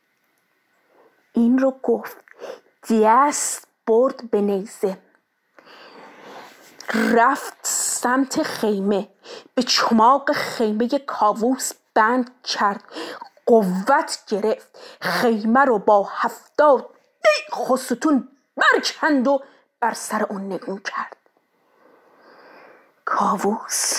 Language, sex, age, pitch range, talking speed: Persian, female, 30-49, 230-335 Hz, 80 wpm